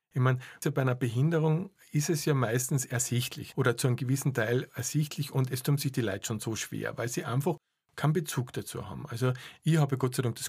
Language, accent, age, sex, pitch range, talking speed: German, Austrian, 50-69, male, 120-155 Hz, 225 wpm